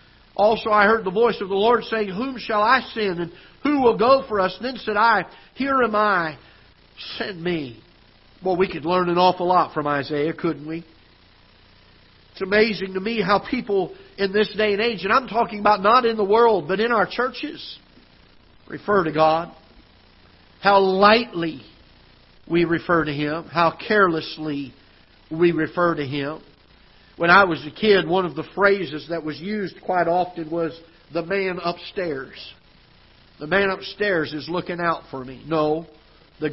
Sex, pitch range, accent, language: male, 145-200 Hz, American, English